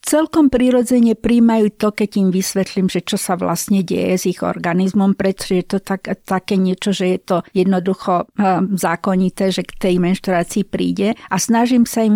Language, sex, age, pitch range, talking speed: Slovak, female, 50-69, 190-225 Hz, 175 wpm